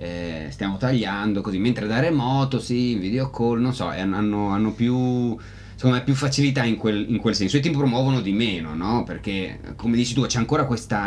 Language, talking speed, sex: Italian, 195 wpm, male